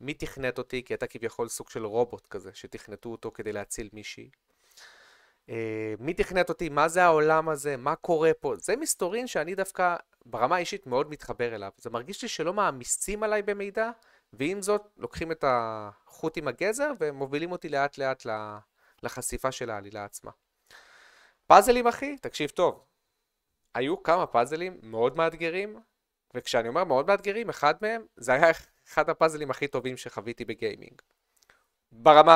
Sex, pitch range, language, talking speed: male, 120-200 Hz, Hebrew, 150 wpm